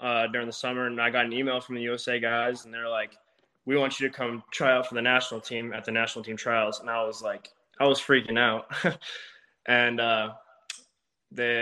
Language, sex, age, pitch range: English, male, 20-39, 110-120 Hz